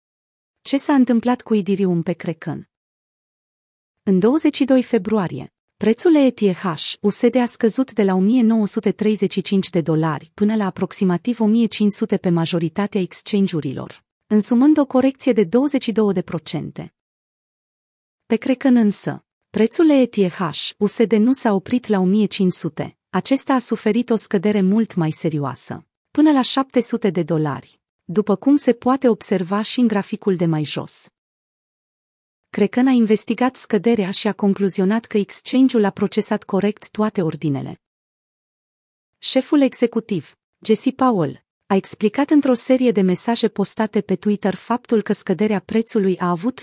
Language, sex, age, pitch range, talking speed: Romanian, female, 30-49, 185-235 Hz, 130 wpm